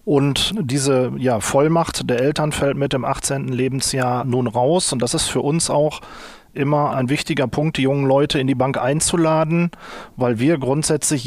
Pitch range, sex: 130-160 Hz, male